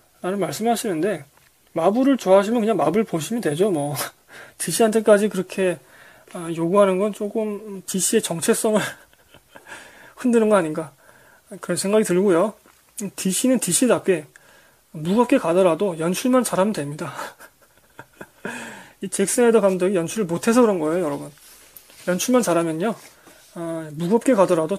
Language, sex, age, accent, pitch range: Korean, male, 20-39, native, 175-220 Hz